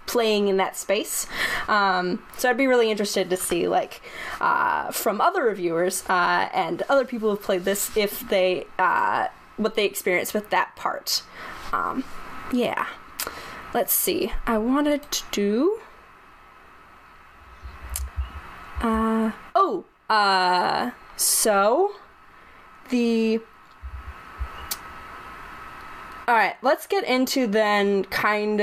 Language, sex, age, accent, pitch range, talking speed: English, female, 10-29, American, 200-250 Hz, 110 wpm